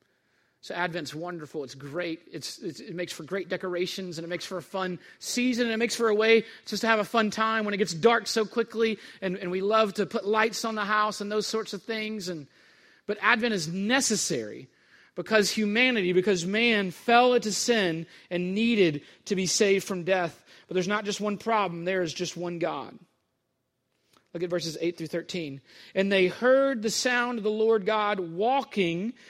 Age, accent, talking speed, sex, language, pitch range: 40-59, American, 200 wpm, male, English, 175-225 Hz